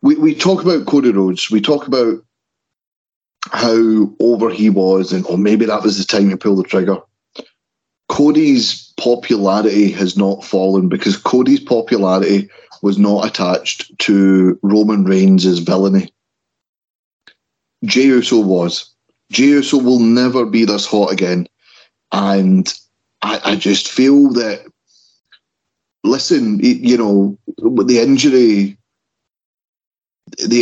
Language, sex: English, male